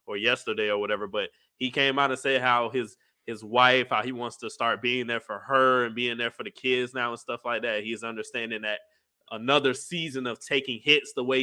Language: English